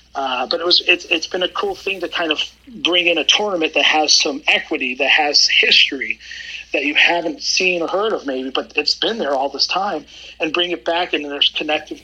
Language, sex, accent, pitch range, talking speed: English, male, American, 135-170 Hz, 230 wpm